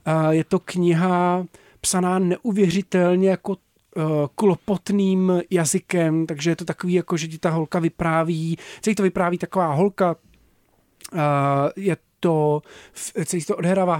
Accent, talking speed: native, 140 wpm